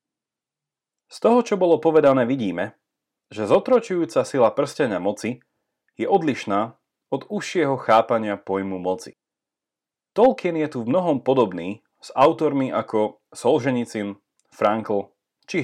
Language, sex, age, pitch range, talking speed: Slovak, male, 30-49, 105-165 Hz, 115 wpm